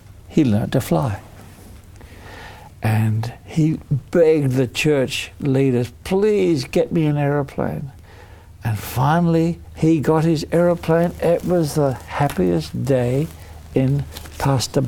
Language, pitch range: English, 100-155 Hz